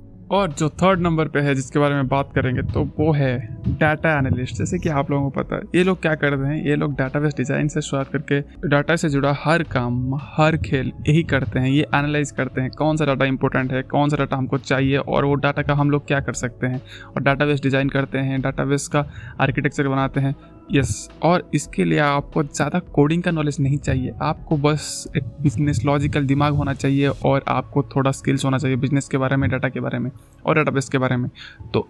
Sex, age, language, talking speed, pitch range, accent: male, 20-39, Hindi, 225 wpm, 135-150 Hz, native